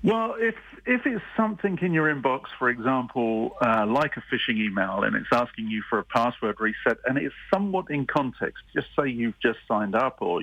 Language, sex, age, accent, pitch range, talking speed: English, male, 50-69, British, 115-150 Hz, 200 wpm